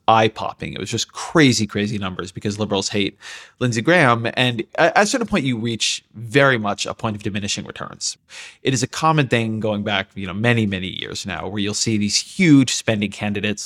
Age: 30-49